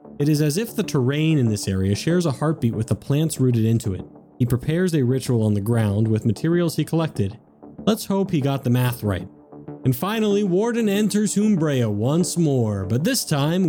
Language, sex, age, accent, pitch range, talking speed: English, male, 30-49, American, 115-160 Hz, 200 wpm